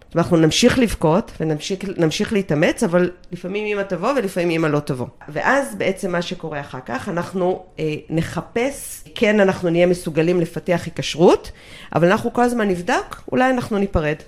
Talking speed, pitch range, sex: 155 wpm, 155-205 Hz, female